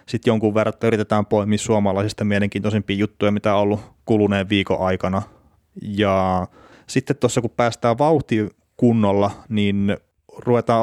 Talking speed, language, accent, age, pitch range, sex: 125 wpm, Finnish, native, 30-49, 100-115 Hz, male